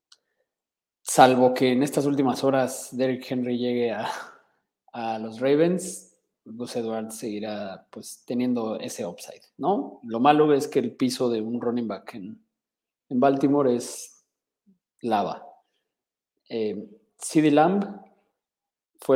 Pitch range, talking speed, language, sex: 115-150 Hz, 120 wpm, Spanish, male